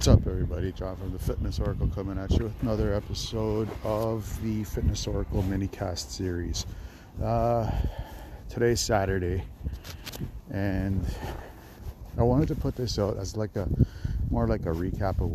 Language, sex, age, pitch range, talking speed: English, male, 50-69, 90-105 Hz, 150 wpm